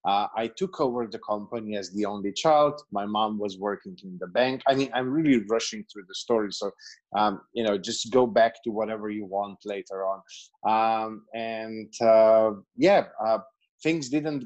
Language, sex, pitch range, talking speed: English, male, 110-130 Hz, 185 wpm